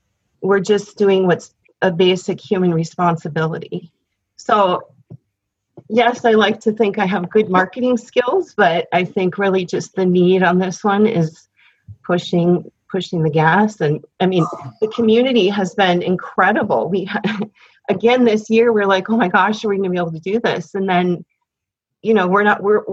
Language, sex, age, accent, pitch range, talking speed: English, female, 40-59, American, 175-210 Hz, 180 wpm